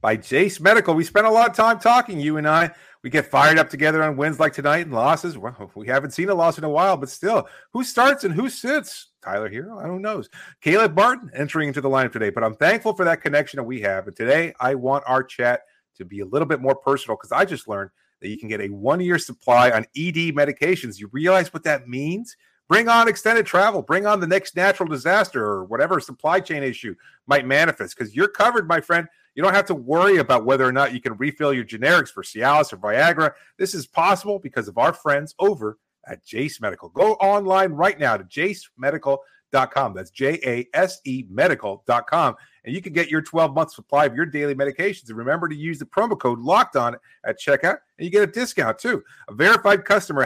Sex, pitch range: male, 135-190 Hz